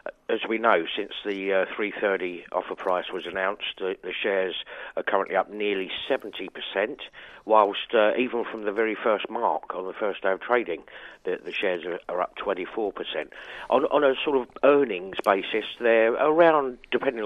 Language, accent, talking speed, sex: English, British, 175 wpm, male